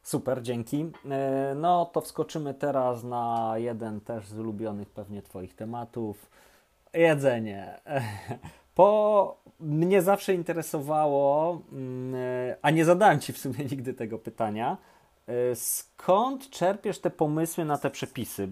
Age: 30-49